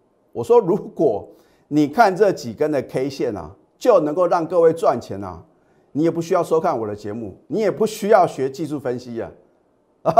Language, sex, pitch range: Chinese, male, 130-190 Hz